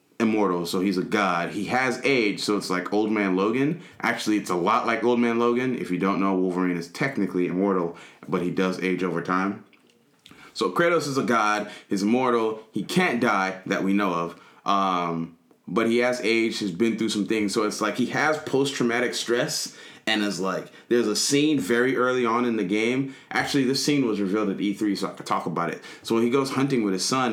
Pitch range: 95-140 Hz